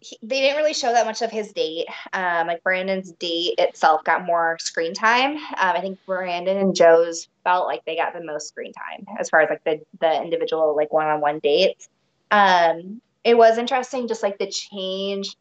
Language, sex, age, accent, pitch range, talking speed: English, female, 20-39, American, 165-210 Hz, 200 wpm